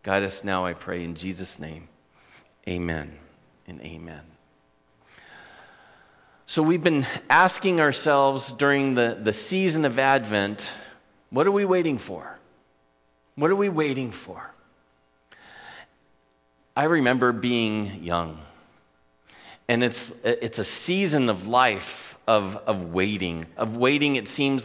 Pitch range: 100-160 Hz